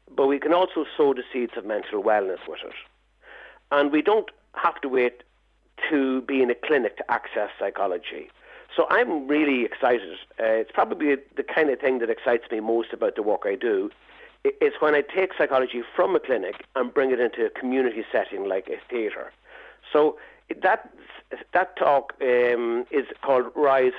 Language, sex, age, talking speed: English, male, 50-69, 180 wpm